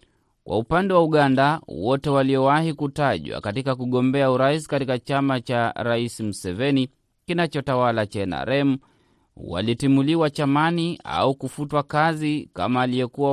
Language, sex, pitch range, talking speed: Swahili, male, 125-140 Hz, 110 wpm